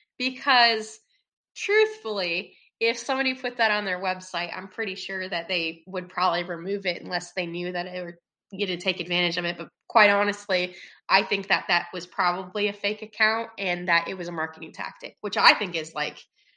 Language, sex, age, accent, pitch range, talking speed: English, female, 20-39, American, 180-220 Hz, 195 wpm